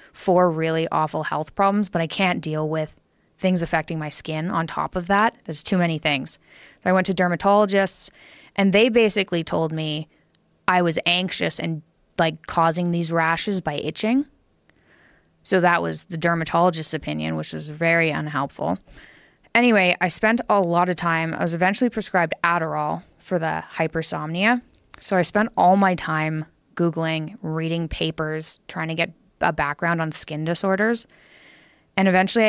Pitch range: 155-185 Hz